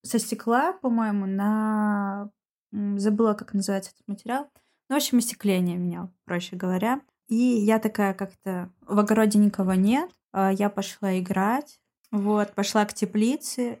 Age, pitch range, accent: 20-39, 195-230 Hz, native